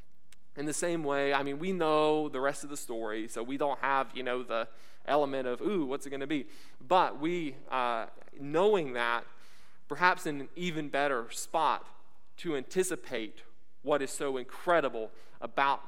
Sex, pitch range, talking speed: male, 125-165 Hz, 175 wpm